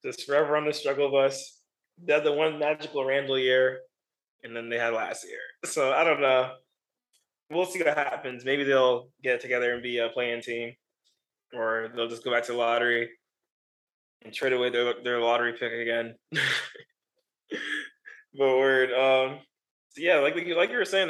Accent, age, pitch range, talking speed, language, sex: American, 20-39, 120-140 Hz, 170 wpm, English, male